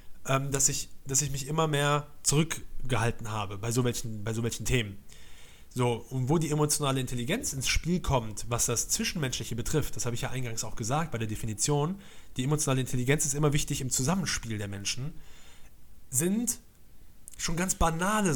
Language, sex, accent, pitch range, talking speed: German, male, German, 120-150 Hz, 175 wpm